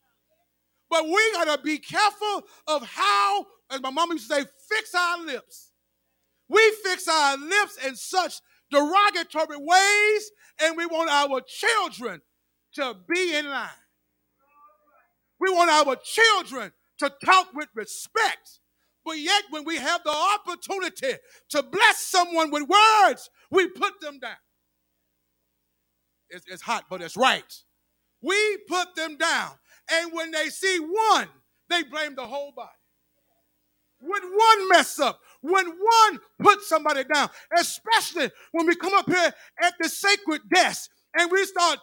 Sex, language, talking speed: male, English, 145 wpm